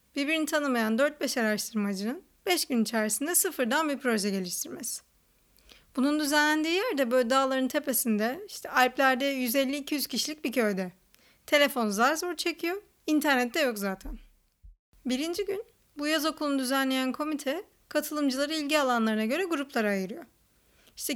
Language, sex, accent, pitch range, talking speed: Turkish, female, native, 230-300 Hz, 125 wpm